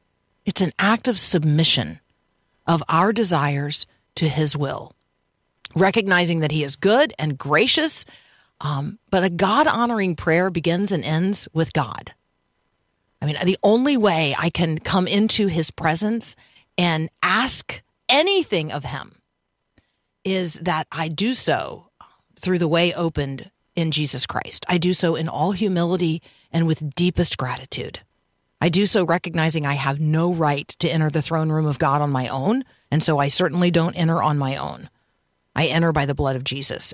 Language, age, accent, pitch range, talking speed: English, 50-69, American, 145-185 Hz, 160 wpm